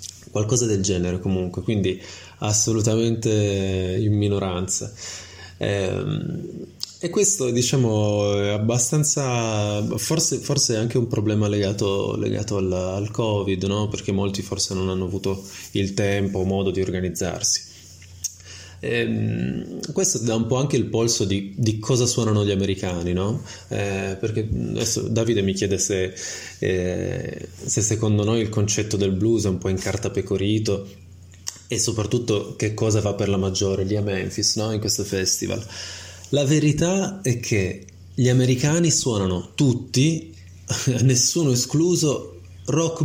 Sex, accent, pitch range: male, native, 95-120 Hz